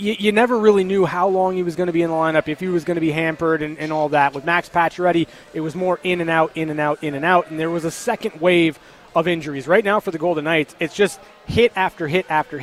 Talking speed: 290 wpm